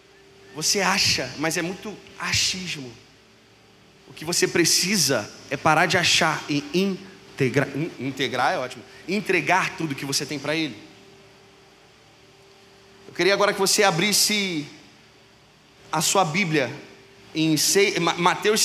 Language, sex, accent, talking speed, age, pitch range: Portuguese, male, Brazilian, 120 wpm, 30-49, 170-230 Hz